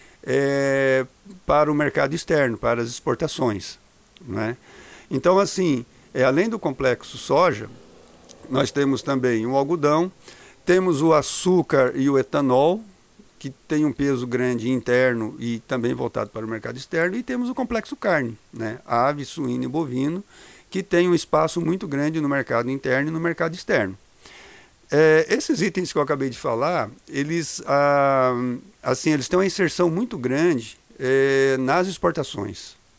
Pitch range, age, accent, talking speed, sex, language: 125-170 Hz, 50-69, Brazilian, 150 wpm, male, Portuguese